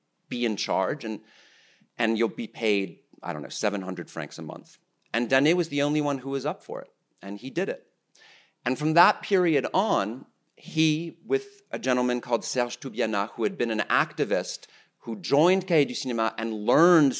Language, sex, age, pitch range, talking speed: English, male, 40-59, 105-155 Hz, 190 wpm